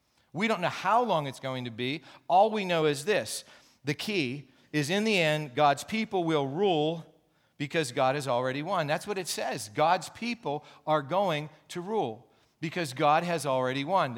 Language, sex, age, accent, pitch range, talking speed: English, male, 40-59, American, 135-180 Hz, 185 wpm